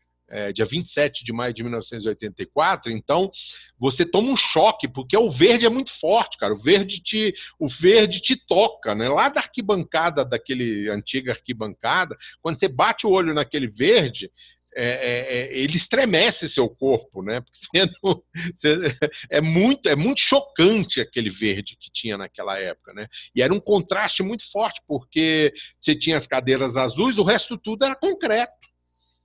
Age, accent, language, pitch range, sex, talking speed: 50-69, Brazilian, Portuguese, 125-195 Hz, male, 160 wpm